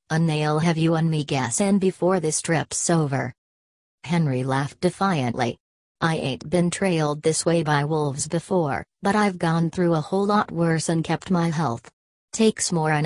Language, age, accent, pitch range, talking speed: English, 40-59, American, 145-175 Hz, 175 wpm